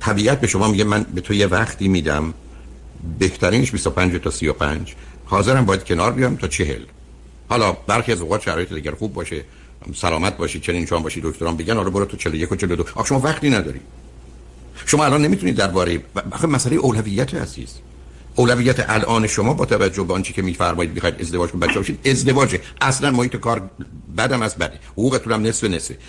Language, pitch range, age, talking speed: Persian, 75-120 Hz, 60-79, 180 wpm